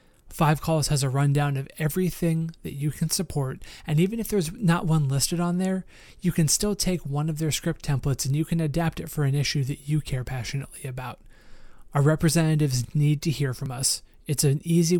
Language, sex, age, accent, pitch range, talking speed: English, male, 30-49, American, 135-170 Hz, 210 wpm